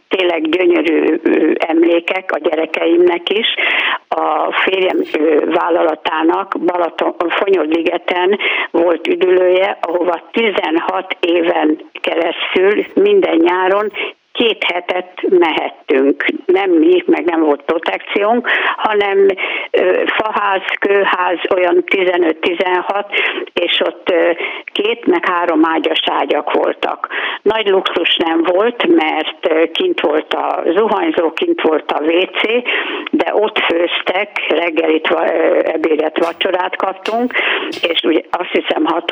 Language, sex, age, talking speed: Hungarian, female, 60-79, 100 wpm